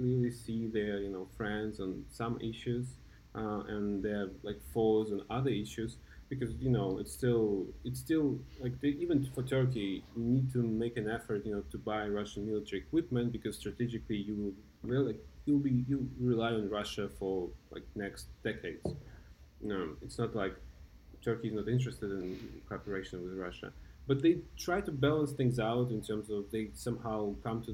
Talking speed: 185 wpm